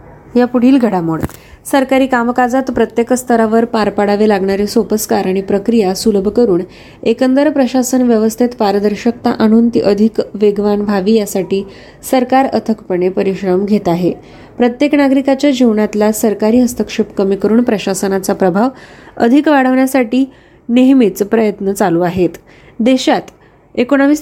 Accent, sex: native, female